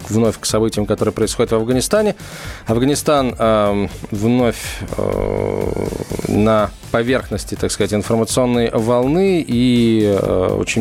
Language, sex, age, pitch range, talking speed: Russian, male, 20-39, 105-130 Hz, 110 wpm